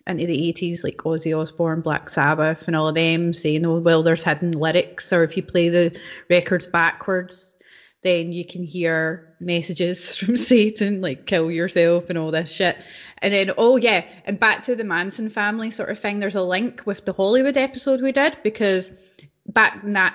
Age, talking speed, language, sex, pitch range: 20-39, 195 wpm, English, female, 170-200 Hz